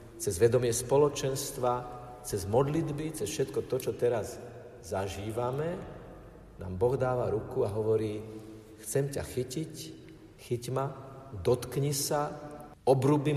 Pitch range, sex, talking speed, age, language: 115-150 Hz, male, 110 wpm, 50-69, Slovak